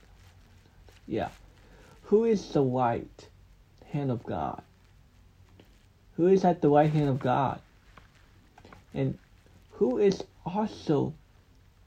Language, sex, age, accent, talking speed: English, male, 60-79, American, 100 wpm